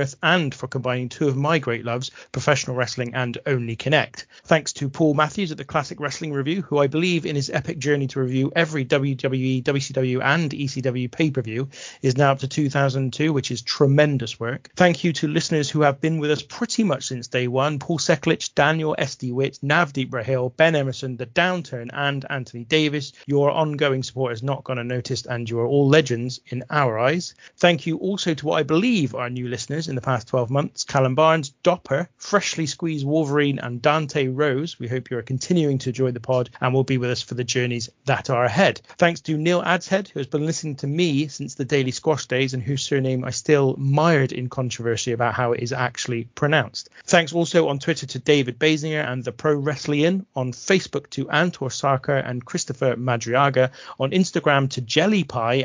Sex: male